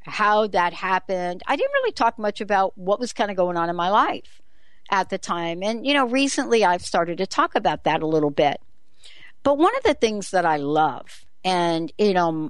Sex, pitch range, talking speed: female, 175-245 Hz, 215 wpm